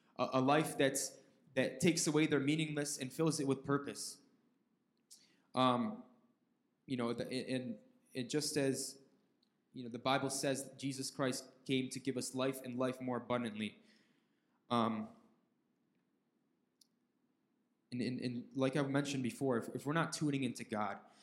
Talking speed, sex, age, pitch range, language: 145 wpm, male, 20-39, 130-150 Hz, English